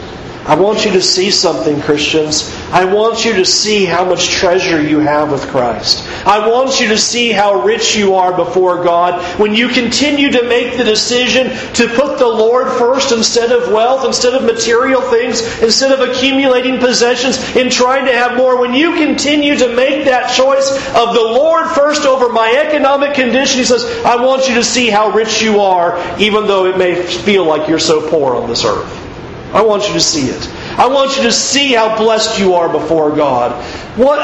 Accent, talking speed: American, 200 wpm